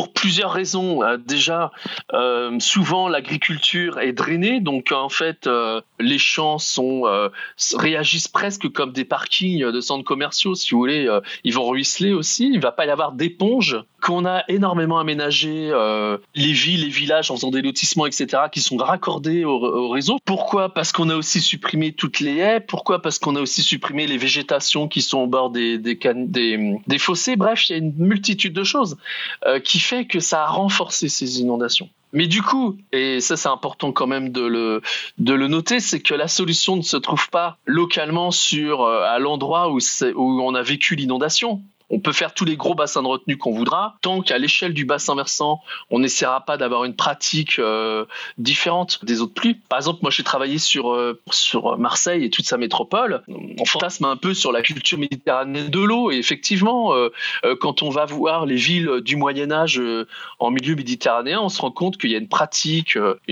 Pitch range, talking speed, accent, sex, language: 135-185 Hz, 205 wpm, French, male, French